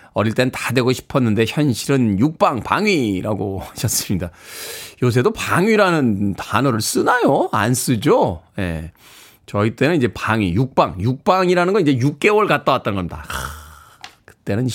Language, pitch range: Korean, 120-180 Hz